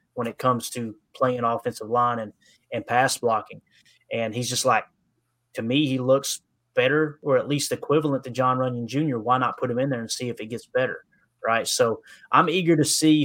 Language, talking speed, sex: English, 210 wpm, male